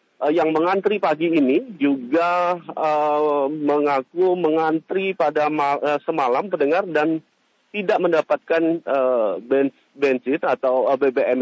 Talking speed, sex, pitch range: 105 wpm, male, 145-185 Hz